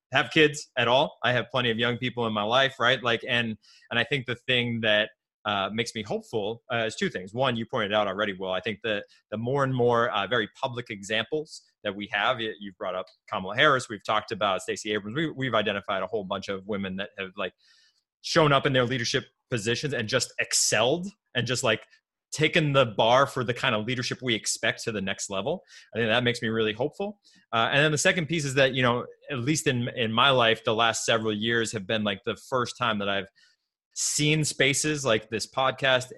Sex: male